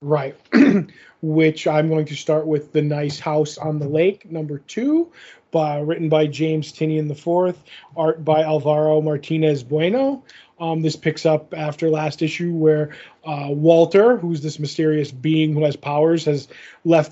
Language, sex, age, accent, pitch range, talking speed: English, male, 20-39, American, 155-170 Hz, 160 wpm